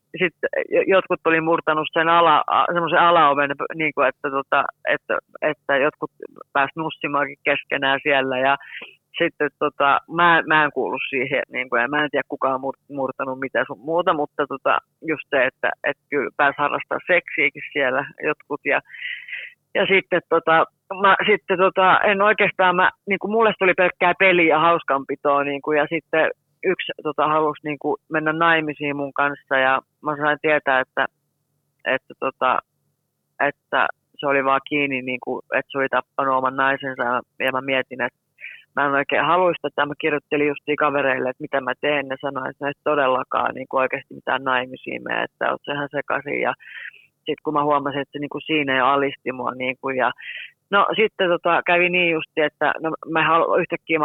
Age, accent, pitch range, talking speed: 30-49, native, 140-170 Hz, 170 wpm